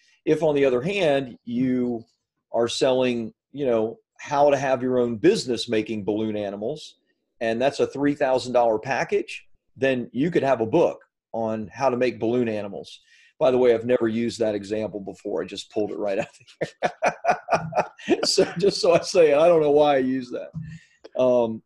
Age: 40-59